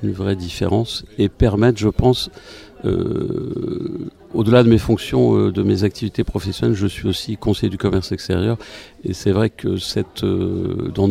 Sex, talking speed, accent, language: male, 160 wpm, French, French